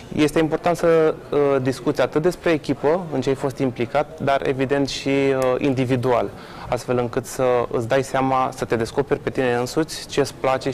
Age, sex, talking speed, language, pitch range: 20-39, male, 175 wpm, Romanian, 125-145 Hz